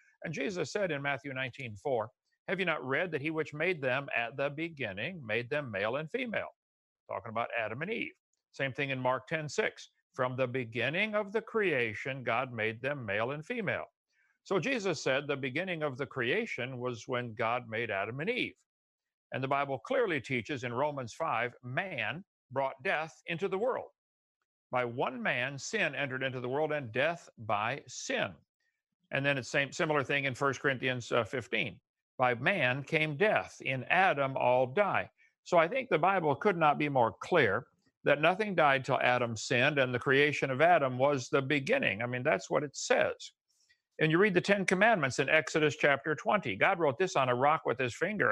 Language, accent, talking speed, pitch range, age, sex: English, American, 195 wpm, 130-185 Hz, 60-79, male